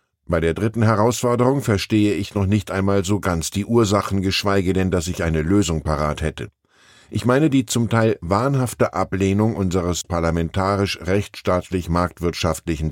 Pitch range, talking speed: 90-115 Hz, 140 wpm